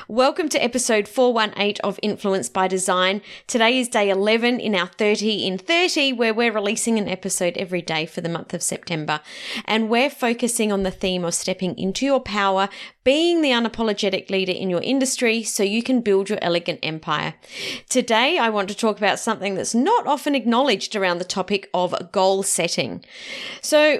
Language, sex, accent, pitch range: English, female, Australian, 190-260 Hz